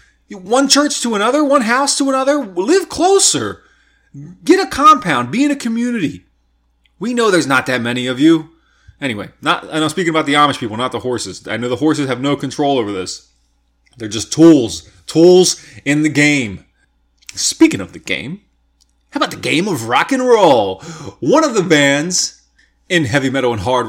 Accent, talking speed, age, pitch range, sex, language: American, 185 wpm, 30-49, 115-165 Hz, male, English